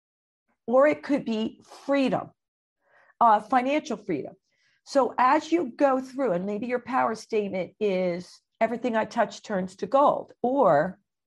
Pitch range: 205-280 Hz